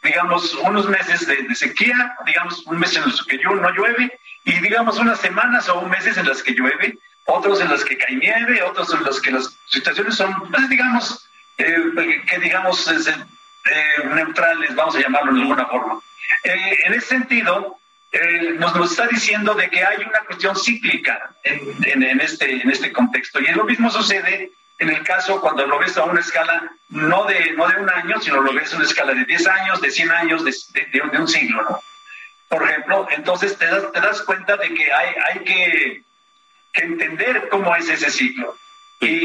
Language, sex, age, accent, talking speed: Spanish, male, 50-69, Mexican, 200 wpm